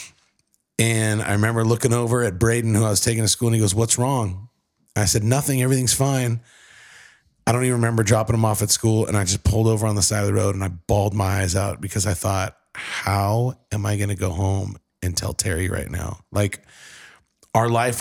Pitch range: 95-115 Hz